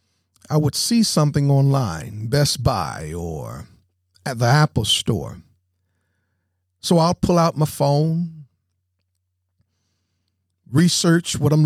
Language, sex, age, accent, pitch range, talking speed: English, male, 50-69, American, 95-155 Hz, 110 wpm